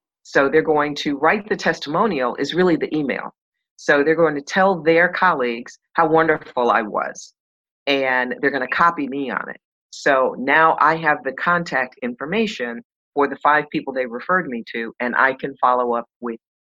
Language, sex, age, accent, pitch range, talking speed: English, female, 40-59, American, 120-160 Hz, 185 wpm